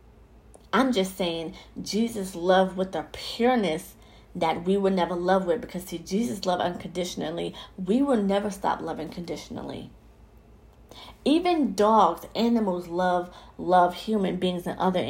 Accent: American